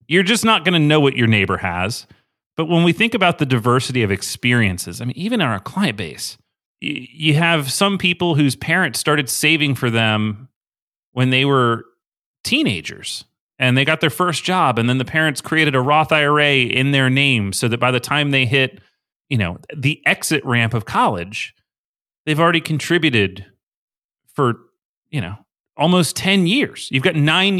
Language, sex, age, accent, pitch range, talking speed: English, male, 30-49, American, 120-160 Hz, 180 wpm